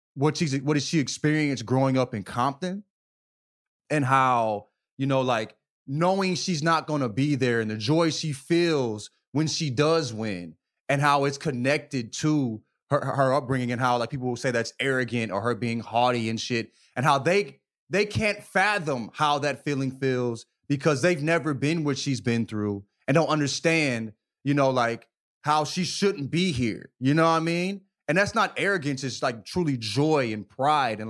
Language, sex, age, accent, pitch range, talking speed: English, male, 20-39, American, 120-155 Hz, 190 wpm